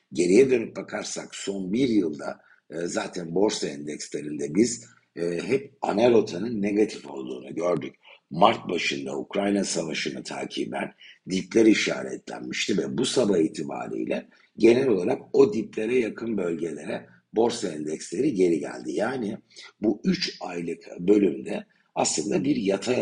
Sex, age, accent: male, 60-79, native